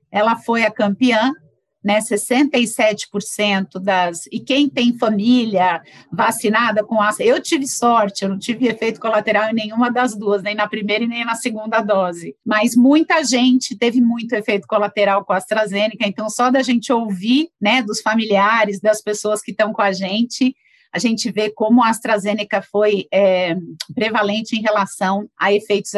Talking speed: 165 wpm